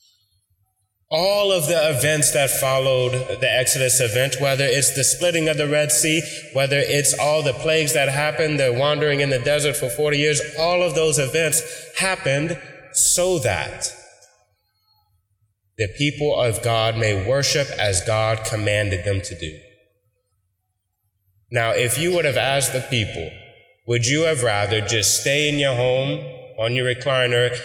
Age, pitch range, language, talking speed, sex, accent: 20-39, 110-155 Hz, English, 155 wpm, male, American